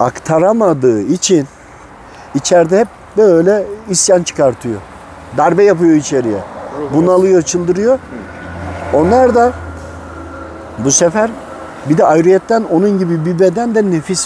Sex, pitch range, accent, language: male, 125-175 Hz, native, Turkish